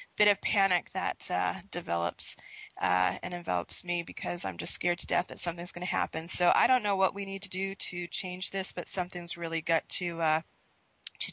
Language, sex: English, female